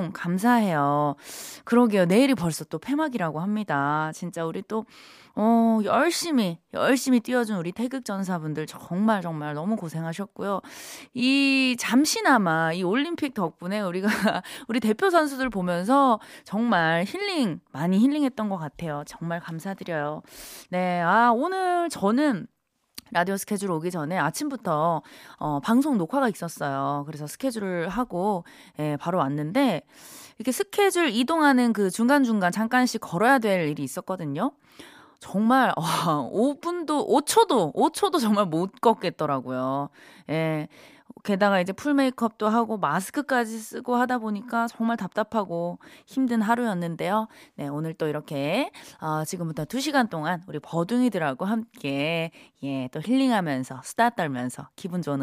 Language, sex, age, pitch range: Korean, female, 20-39, 165-255 Hz